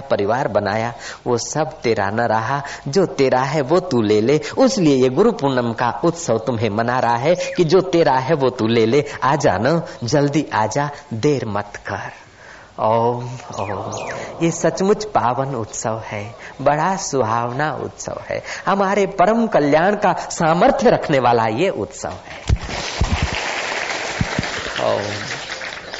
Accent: native